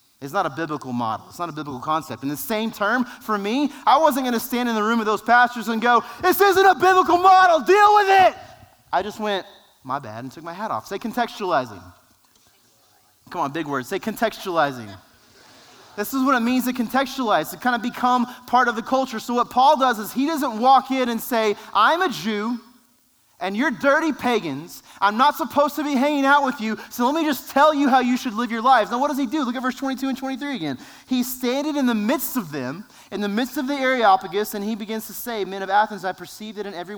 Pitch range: 200-255 Hz